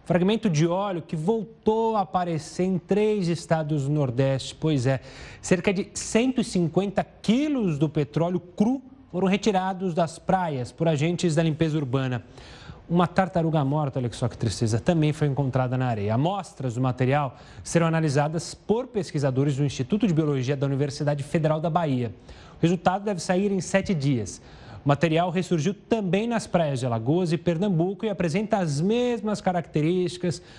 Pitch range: 145-190 Hz